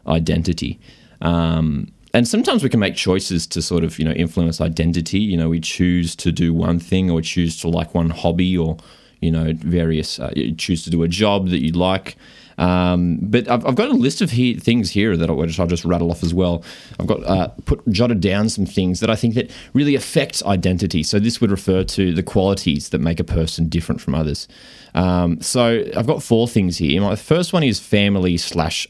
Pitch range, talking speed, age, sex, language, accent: 85-100 Hz, 215 wpm, 20-39, male, English, Australian